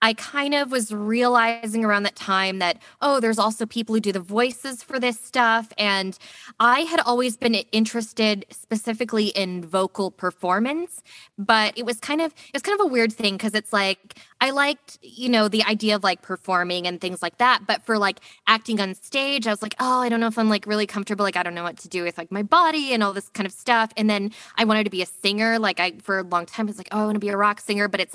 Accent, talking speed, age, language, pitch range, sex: American, 255 wpm, 20-39, English, 190-230 Hz, female